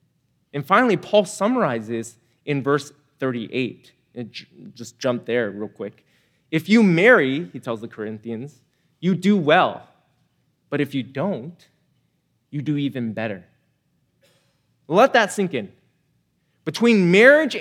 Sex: male